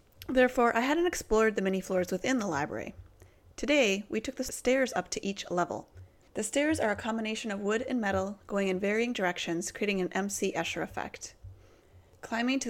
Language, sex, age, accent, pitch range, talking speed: English, female, 30-49, American, 175-225 Hz, 185 wpm